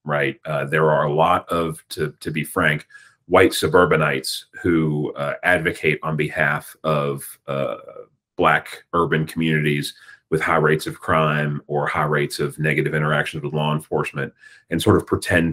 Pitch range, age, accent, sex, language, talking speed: 75-85 Hz, 30-49, American, male, English, 160 wpm